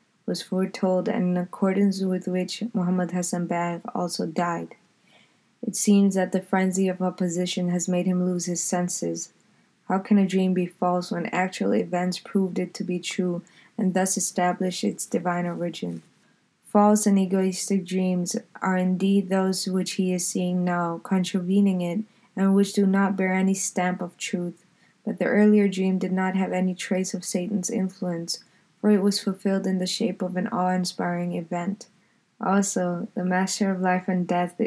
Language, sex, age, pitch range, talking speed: English, female, 20-39, 180-200 Hz, 170 wpm